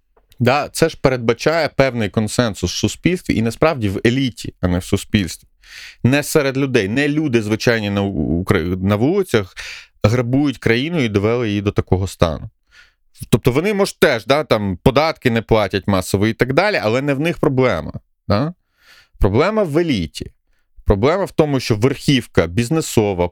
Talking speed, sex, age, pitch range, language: 155 wpm, male, 30-49, 105-140 Hz, Ukrainian